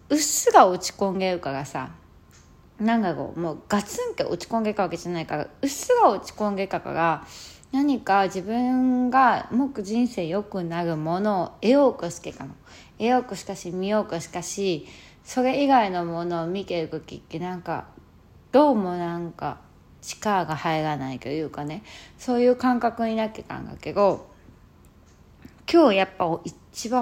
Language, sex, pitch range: Japanese, female, 165-245 Hz